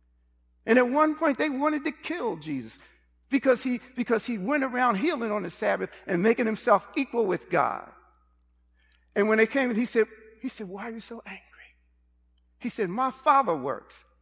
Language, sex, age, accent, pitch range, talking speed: English, male, 50-69, American, 185-280 Hz, 175 wpm